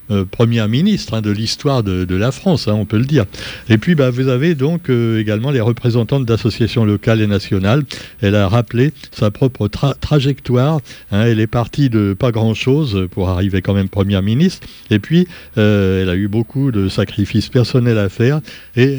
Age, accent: 60-79, French